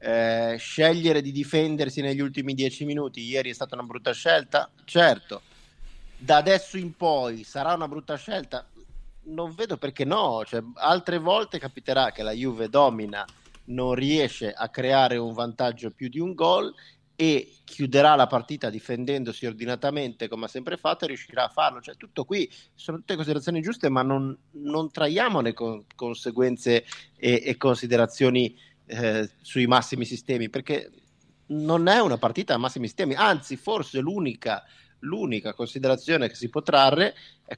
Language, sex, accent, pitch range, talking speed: Italian, male, native, 120-150 Hz, 155 wpm